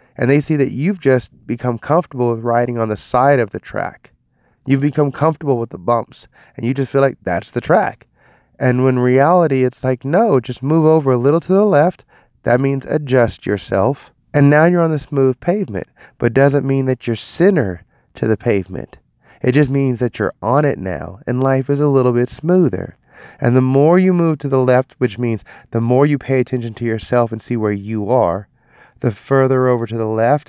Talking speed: 210 wpm